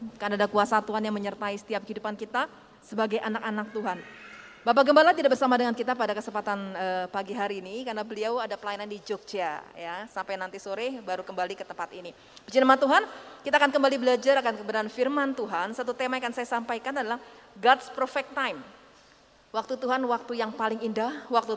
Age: 30-49